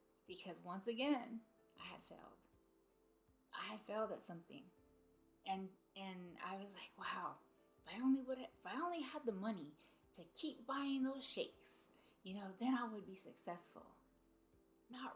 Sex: female